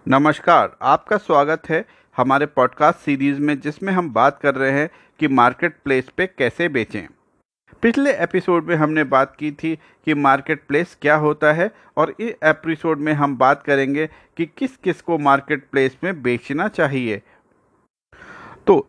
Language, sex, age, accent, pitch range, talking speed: Hindi, male, 50-69, native, 135-180 Hz, 155 wpm